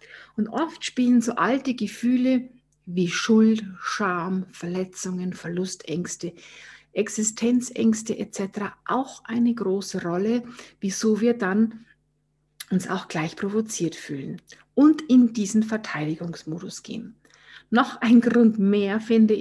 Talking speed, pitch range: 110 wpm, 180-235 Hz